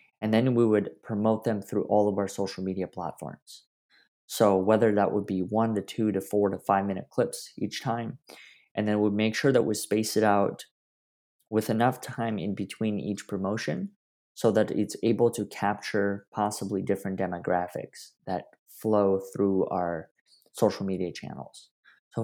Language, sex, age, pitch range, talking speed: English, male, 20-39, 95-105 Hz, 170 wpm